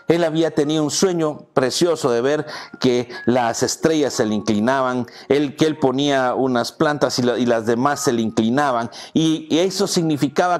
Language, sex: Spanish, male